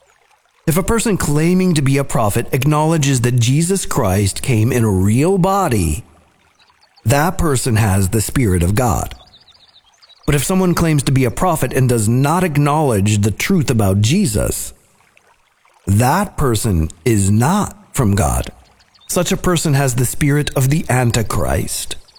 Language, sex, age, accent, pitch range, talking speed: English, male, 50-69, American, 105-145 Hz, 150 wpm